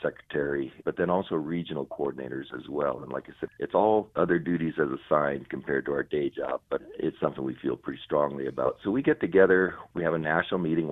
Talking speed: 220 wpm